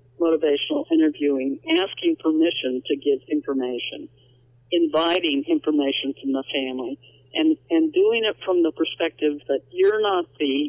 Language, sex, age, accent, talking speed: English, male, 60-79, American, 130 wpm